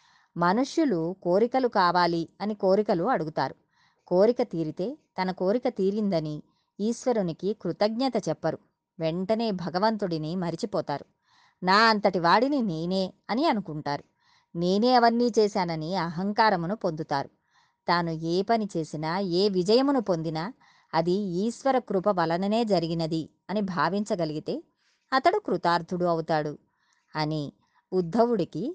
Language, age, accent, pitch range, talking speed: Telugu, 20-39, native, 165-230 Hz, 100 wpm